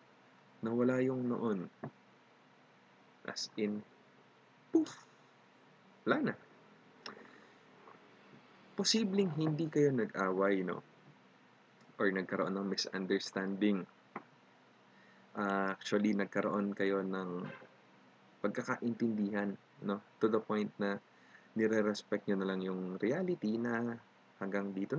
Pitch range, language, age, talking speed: 95-120 Hz, Filipino, 20-39, 90 wpm